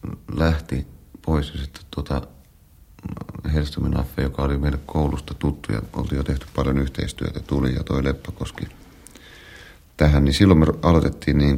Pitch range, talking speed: 65-80 Hz, 140 wpm